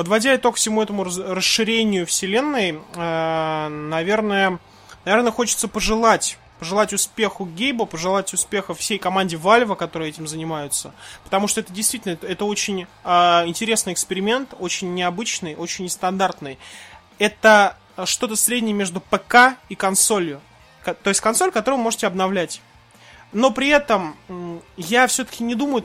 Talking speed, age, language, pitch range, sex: 130 wpm, 20-39, Russian, 170-215 Hz, male